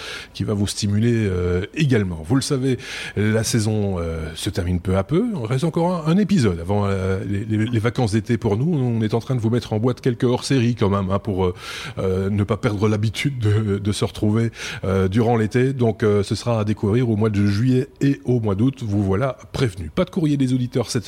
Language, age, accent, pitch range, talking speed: French, 30-49, French, 105-135 Hz, 230 wpm